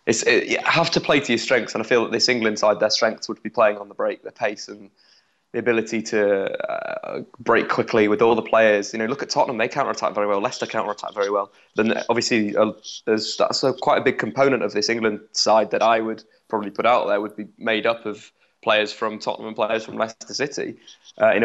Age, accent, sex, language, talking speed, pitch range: 20-39, British, male, English, 245 wpm, 110-120 Hz